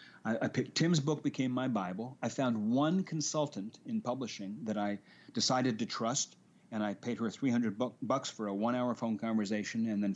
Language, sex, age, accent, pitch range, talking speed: English, male, 40-59, American, 105-145 Hz, 190 wpm